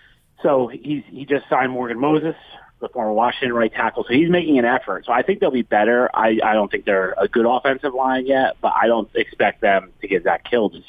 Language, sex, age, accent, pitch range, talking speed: English, male, 30-49, American, 100-125 Hz, 235 wpm